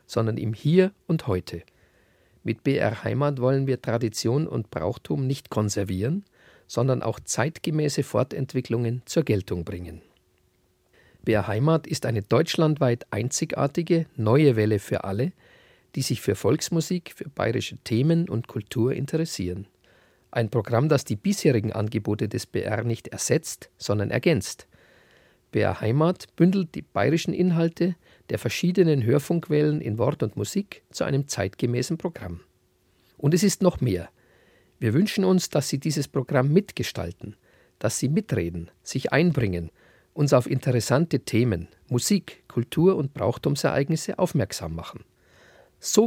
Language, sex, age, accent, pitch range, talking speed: German, male, 50-69, German, 105-155 Hz, 130 wpm